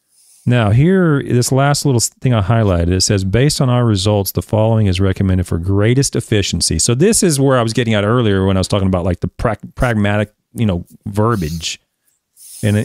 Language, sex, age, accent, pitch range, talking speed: English, male, 40-59, American, 90-120 Hz, 200 wpm